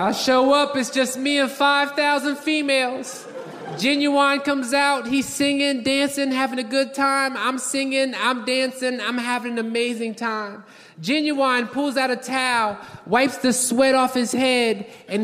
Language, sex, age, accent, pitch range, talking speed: English, male, 20-39, American, 245-285 Hz, 160 wpm